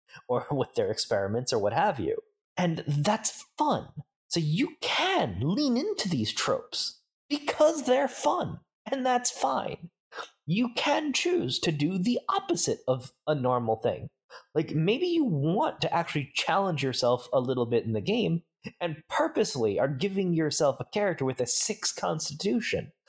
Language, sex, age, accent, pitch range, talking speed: English, male, 20-39, American, 135-210 Hz, 155 wpm